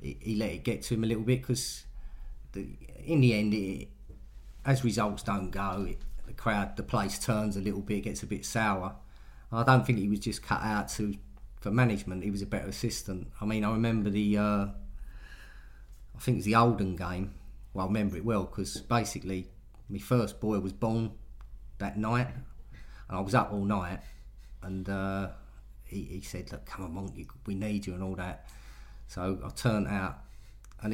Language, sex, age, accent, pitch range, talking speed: English, male, 40-59, British, 100-115 Hz, 200 wpm